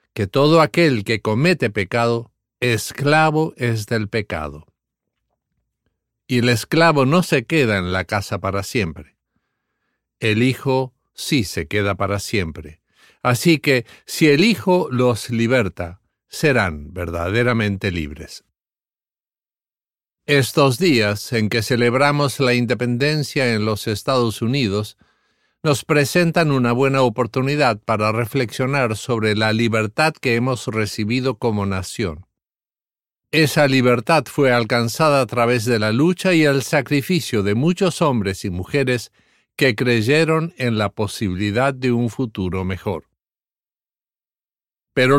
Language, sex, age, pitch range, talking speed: English, male, 50-69, 110-145 Hz, 120 wpm